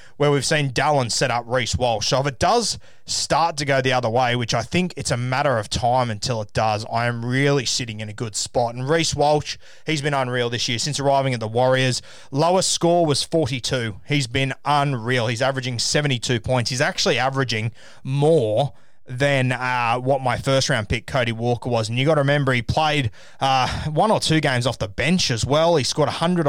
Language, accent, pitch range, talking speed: English, Australian, 120-145 Hz, 215 wpm